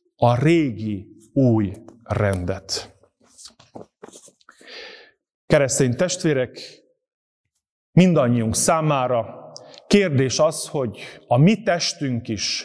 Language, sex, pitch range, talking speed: Hungarian, male, 120-180 Hz, 70 wpm